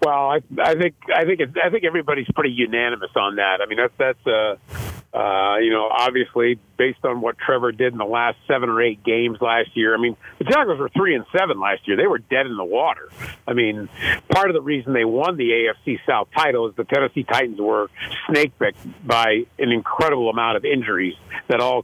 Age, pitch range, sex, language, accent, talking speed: 50-69, 110-140 Hz, male, English, American, 215 wpm